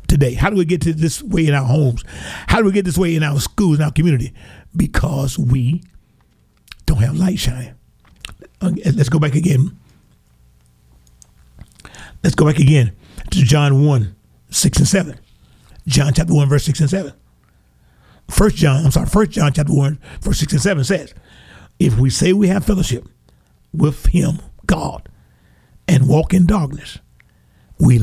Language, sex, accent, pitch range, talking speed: English, male, American, 110-160 Hz, 165 wpm